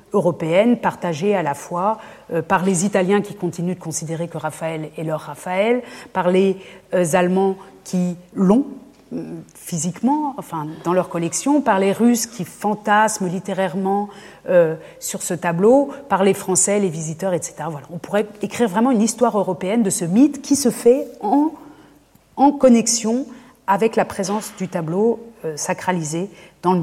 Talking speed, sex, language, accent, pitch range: 160 wpm, female, French, French, 175-210 Hz